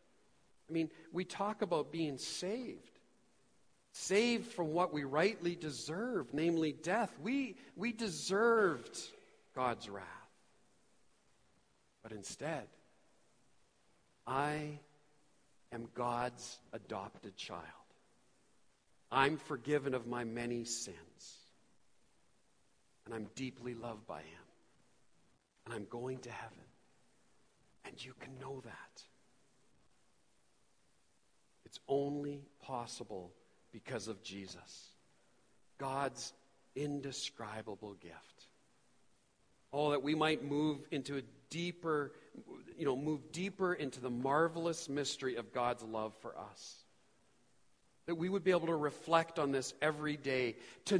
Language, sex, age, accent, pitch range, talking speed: English, male, 50-69, American, 130-175 Hz, 105 wpm